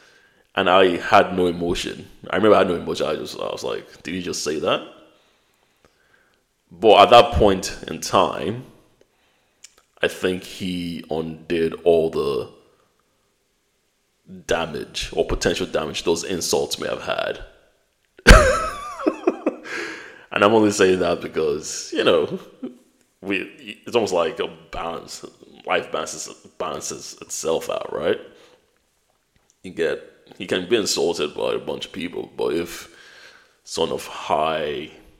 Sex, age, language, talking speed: male, 20-39, English, 135 wpm